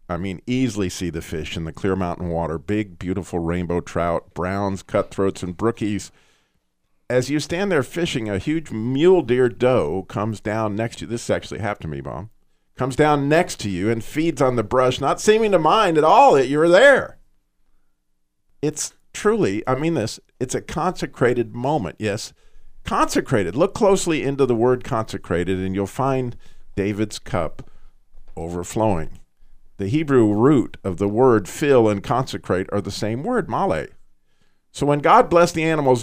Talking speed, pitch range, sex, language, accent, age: 170 wpm, 95-145 Hz, male, English, American, 50-69